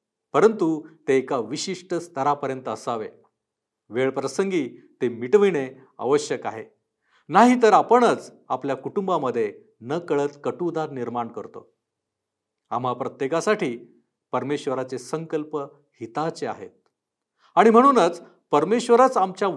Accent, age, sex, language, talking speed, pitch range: native, 50-69, male, Marathi, 100 wpm, 125-185 Hz